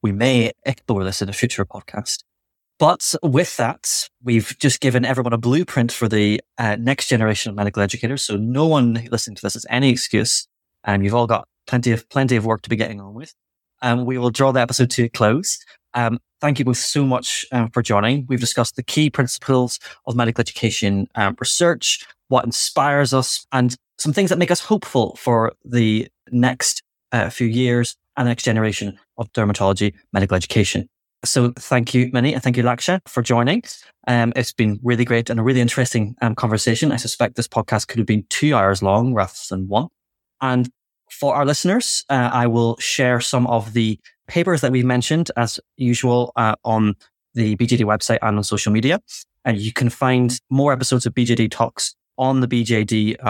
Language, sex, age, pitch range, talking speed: English, male, 30-49, 110-125 Hz, 195 wpm